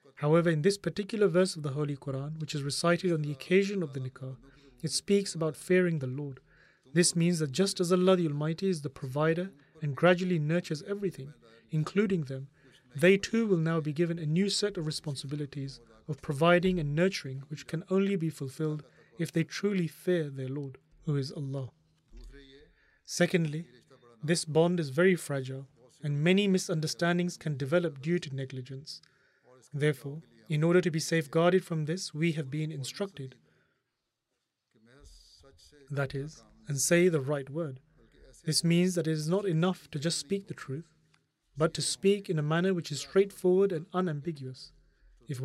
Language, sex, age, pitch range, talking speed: English, male, 30-49, 140-175 Hz, 170 wpm